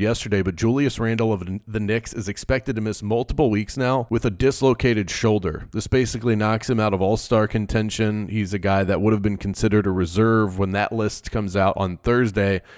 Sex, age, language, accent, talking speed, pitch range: male, 30-49, English, American, 200 wpm, 100-120 Hz